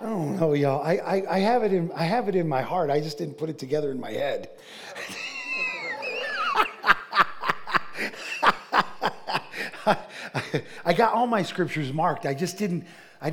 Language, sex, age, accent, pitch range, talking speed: English, male, 50-69, American, 145-195 Hz, 160 wpm